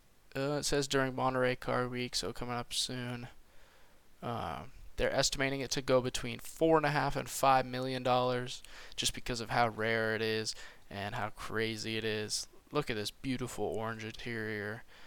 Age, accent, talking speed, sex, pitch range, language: 20-39, American, 160 wpm, male, 110-130 Hz, English